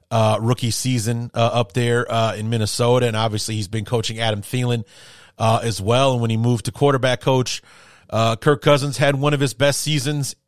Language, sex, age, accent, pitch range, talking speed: English, male, 30-49, American, 110-130 Hz, 200 wpm